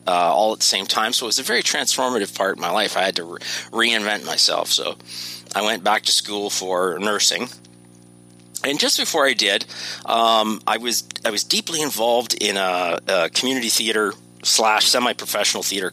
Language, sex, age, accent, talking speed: English, male, 40-59, American, 190 wpm